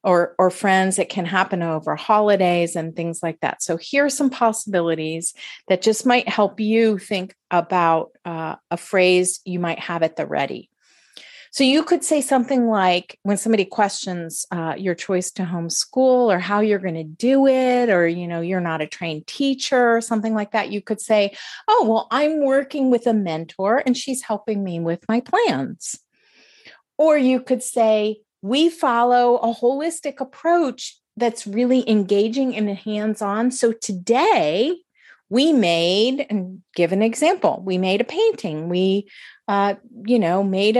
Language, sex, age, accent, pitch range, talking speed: English, female, 40-59, American, 185-265 Hz, 170 wpm